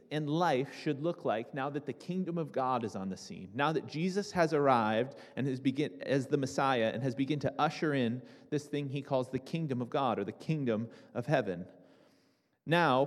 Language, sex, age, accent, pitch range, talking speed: English, male, 30-49, American, 135-180 Hz, 210 wpm